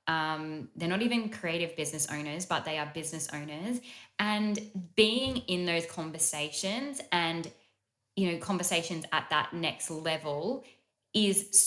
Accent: Australian